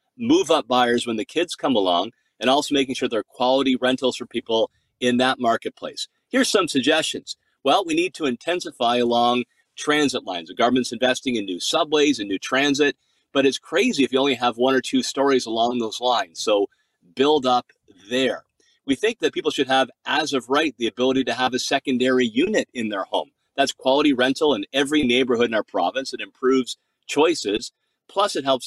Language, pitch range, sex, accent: English, 120-155 Hz, male, American